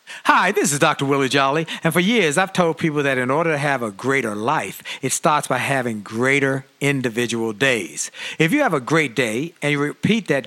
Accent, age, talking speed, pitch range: American, 50-69, 210 wpm, 140-195 Hz